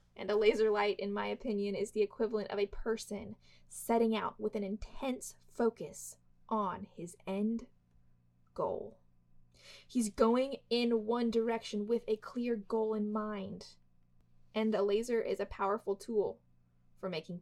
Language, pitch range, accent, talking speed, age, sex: English, 180-230 Hz, American, 150 wpm, 20-39, female